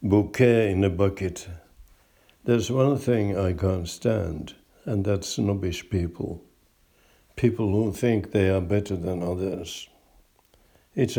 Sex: male